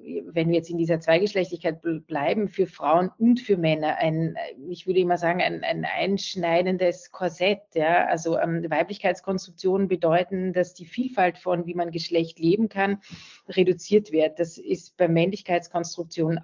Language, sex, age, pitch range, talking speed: German, female, 30-49, 165-190 Hz, 150 wpm